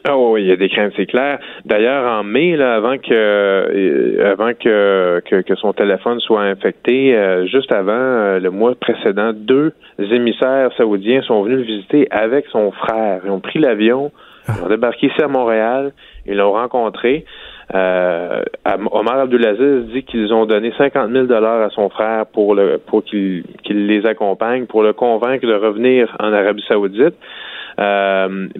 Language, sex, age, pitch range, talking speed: French, male, 30-49, 100-120 Hz, 170 wpm